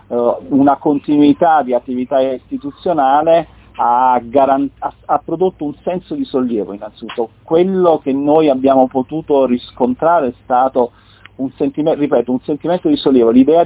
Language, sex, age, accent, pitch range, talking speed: Italian, male, 40-59, native, 115-145 Hz, 120 wpm